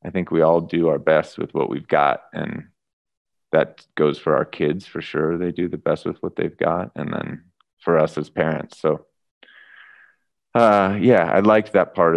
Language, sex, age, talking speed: English, male, 30-49, 195 wpm